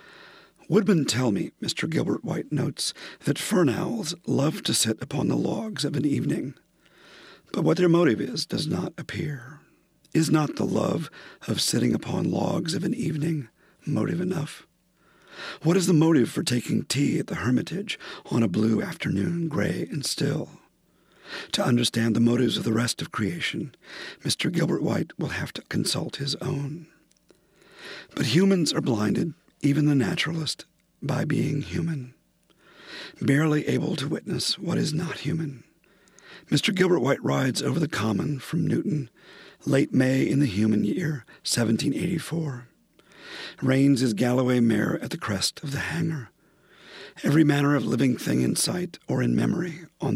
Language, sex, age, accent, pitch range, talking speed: English, male, 50-69, American, 130-165 Hz, 155 wpm